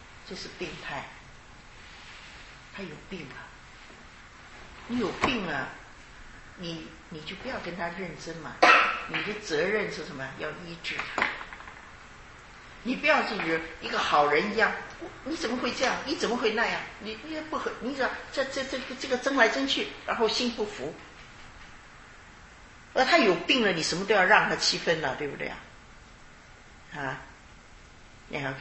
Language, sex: English, female